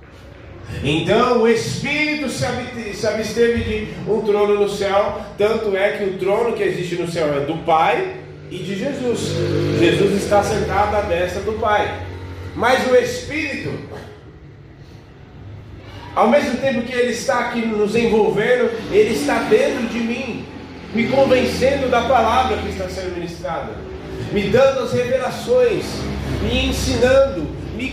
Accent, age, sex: Brazilian, 30-49, male